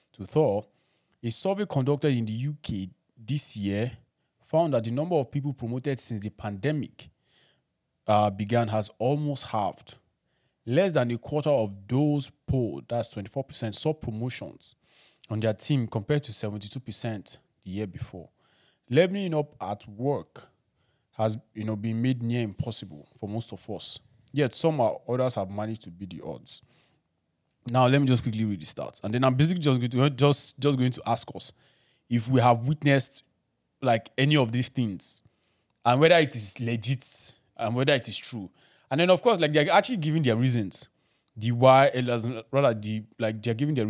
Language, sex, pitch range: English, male, 110-140 Hz